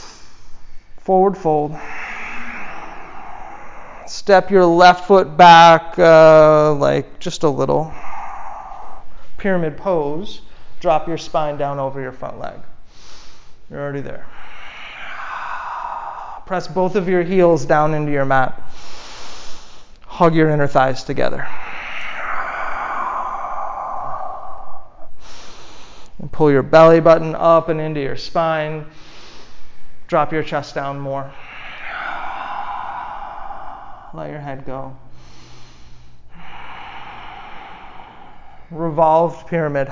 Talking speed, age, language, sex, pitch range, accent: 90 wpm, 30-49, English, male, 150-195 Hz, American